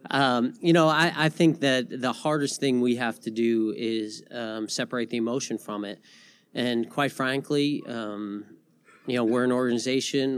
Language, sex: English, male